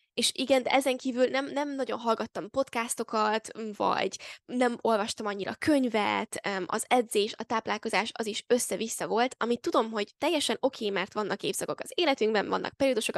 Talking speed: 155 wpm